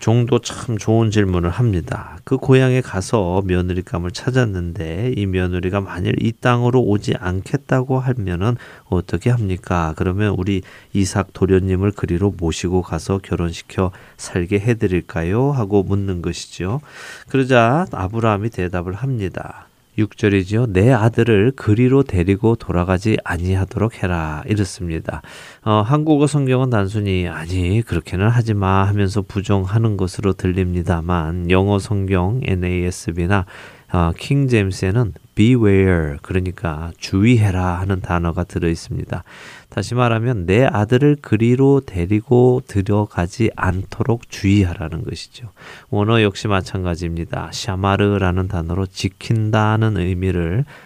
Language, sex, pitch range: Korean, male, 90-115 Hz